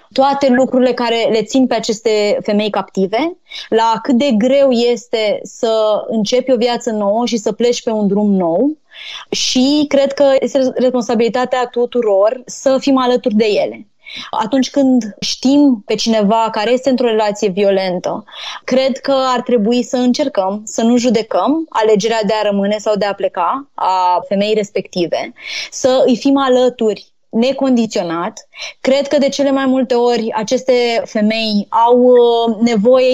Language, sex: Romanian, female